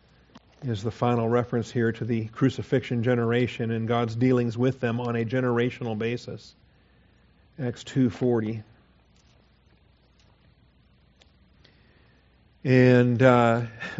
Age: 50-69